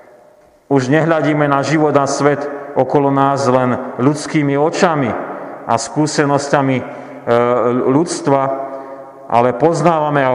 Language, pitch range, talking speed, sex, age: Slovak, 130-155 Hz, 100 wpm, male, 40-59